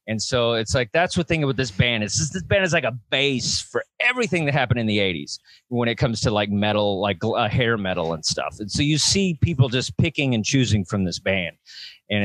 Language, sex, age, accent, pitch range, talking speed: English, male, 30-49, American, 110-150 Hz, 235 wpm